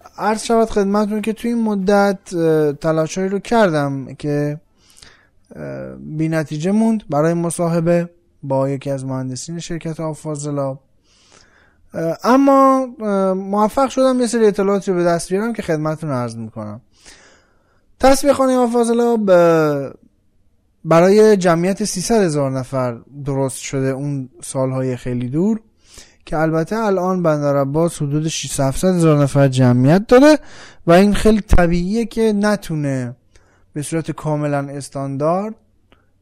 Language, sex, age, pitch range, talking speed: Persian, male, 20-39, 135-205 Hz, 115 wpm